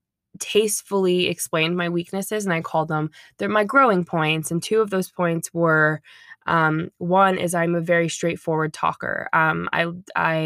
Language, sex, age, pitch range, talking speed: English, female, 20-39, 160-180 Hz, 165 wpm